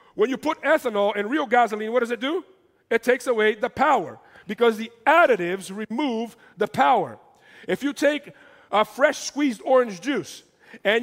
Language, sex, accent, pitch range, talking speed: English, male, American, 185-265 Hz, 170 wpm